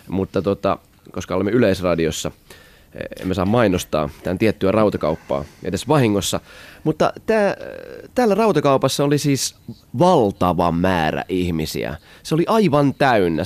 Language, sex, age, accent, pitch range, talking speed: Finnish, male, 20-39, native, 100-150 Hz, 115 wpm